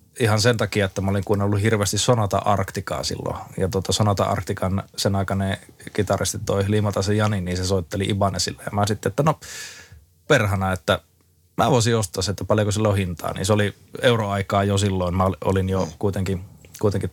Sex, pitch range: male, 95-115 Hz